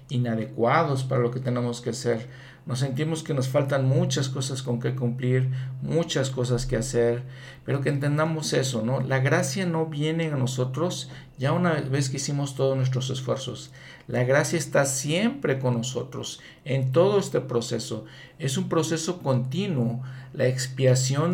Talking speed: 155 wpm